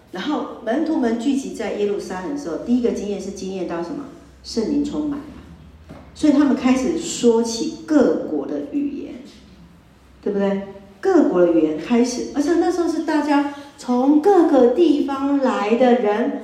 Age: 50-69